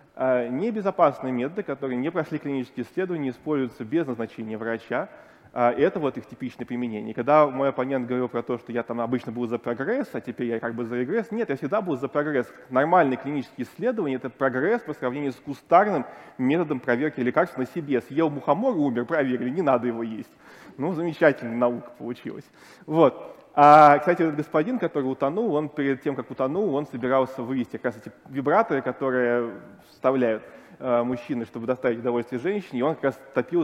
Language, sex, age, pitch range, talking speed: Russian, male, 20-39, 120-155 Hz, 175 wpm